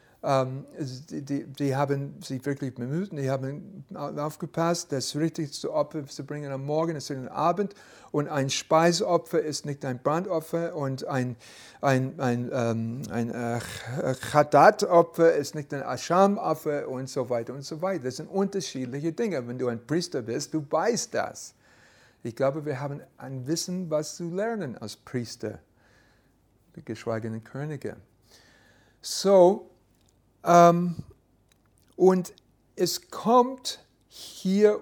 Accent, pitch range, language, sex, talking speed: German, 125-165 Hz, German, male, 135 wpm